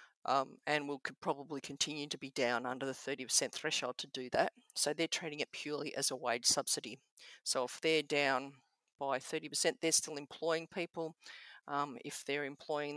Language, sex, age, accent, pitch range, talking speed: English, female, 50-69, Australian, 135-155 Hz, 180 wpm